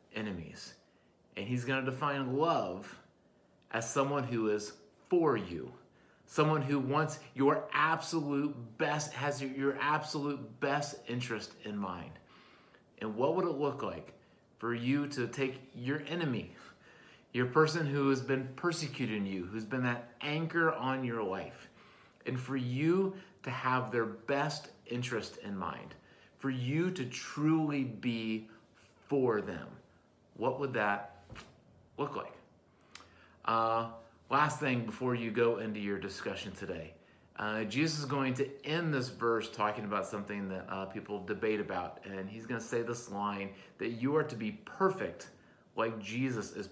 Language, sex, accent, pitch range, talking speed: English, male, American, 105-140 Hz, 150 wpm